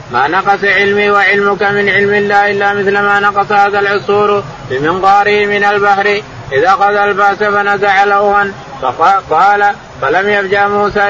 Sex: male